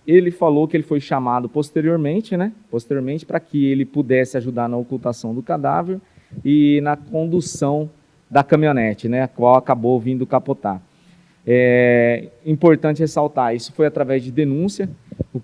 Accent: Brazilian